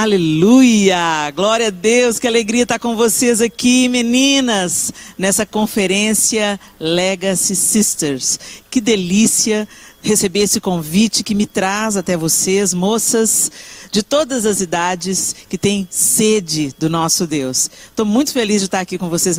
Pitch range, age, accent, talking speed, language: 185-245 Hz, 50-69, Brazilian, 135 wpm, Portuguese